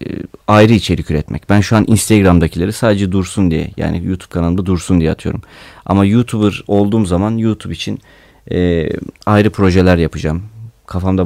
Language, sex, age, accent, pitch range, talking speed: Turkish, male, 30-49, native, 85-105 Hz, 145 wpm